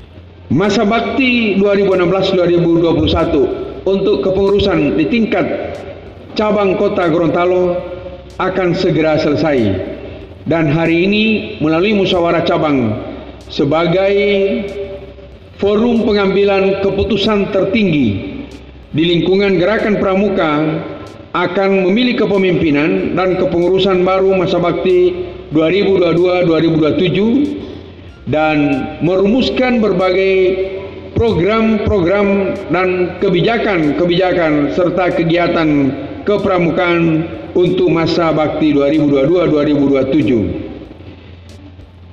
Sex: male